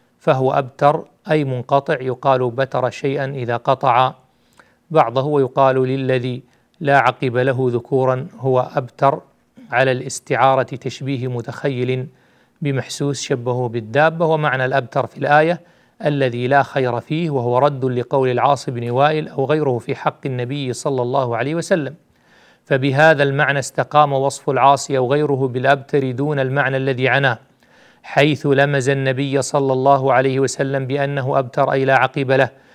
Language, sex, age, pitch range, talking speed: Arabic, male, 40-59, 130-145 Hz, 135 wpm